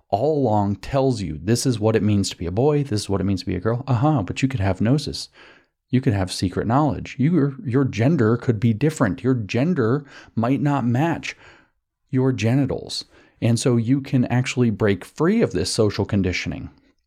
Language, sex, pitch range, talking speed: English, male, 95-125 Hz, 200 wpm